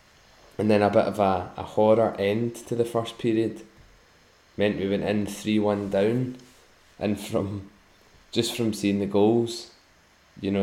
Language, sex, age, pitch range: English, male, 10-29, 95-110 Hz